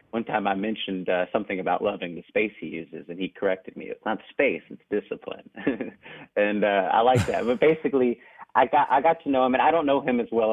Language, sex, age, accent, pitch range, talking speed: English, male, 30-49, American, 95-120 Hz, 240 wpm